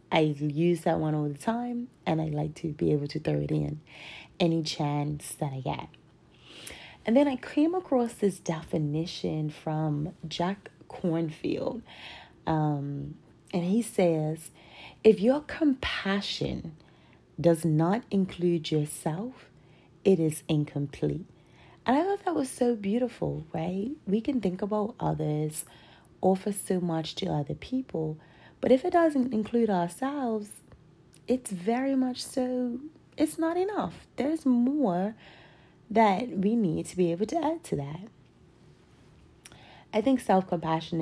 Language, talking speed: English, 135 wpm